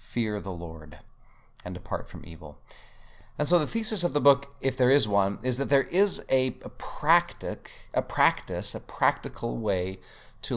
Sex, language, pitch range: male, English, 100-125 Hz